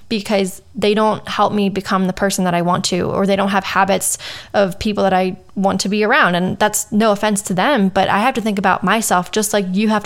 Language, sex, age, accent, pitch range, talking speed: English, female, 10-29, American, 190-220 Hz, 250 wpm